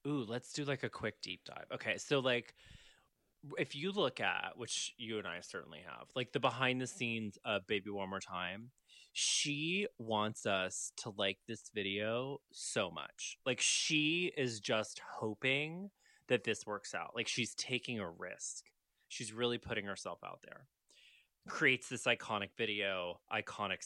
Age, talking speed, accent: 20-39, 160 wpm, American